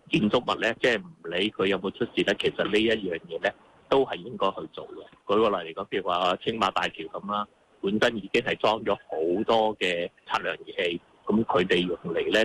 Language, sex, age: Chinese, male, 30-49